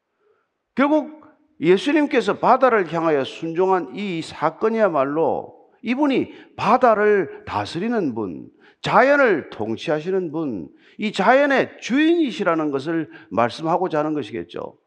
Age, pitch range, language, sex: 50-69, 190-290 Hz, Korean, male